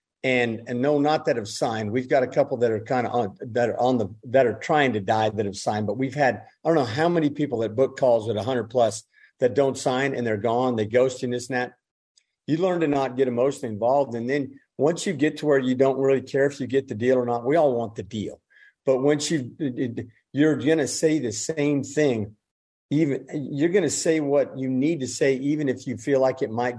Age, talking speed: 50-69, 245 wpm